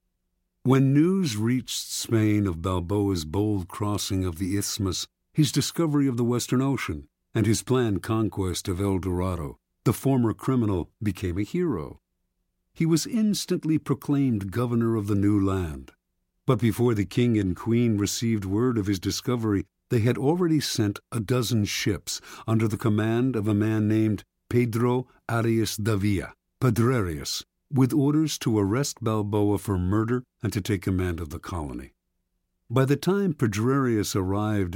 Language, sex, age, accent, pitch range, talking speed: English, male, 50-69, American, 100-125 Hz, 150 wpm